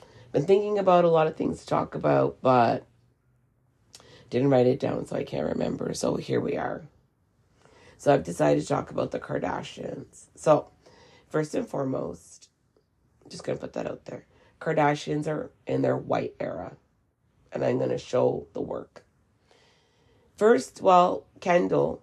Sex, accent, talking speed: female, American, 160 wpm